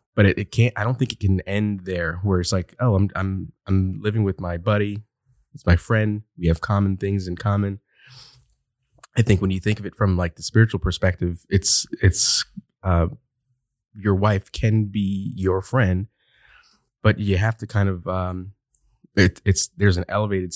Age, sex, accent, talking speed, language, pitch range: 20-39, male, American, 185 wpm, English, 95-110 Hz